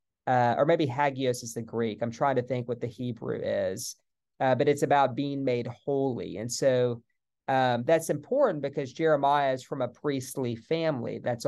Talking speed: 185 wpm